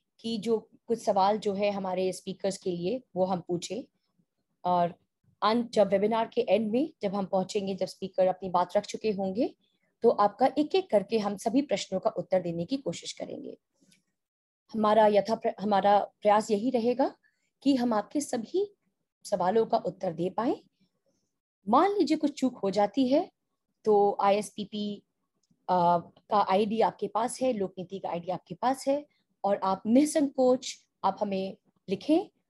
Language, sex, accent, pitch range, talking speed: Hindi, female, native, 190-250 Hz, 160 wpm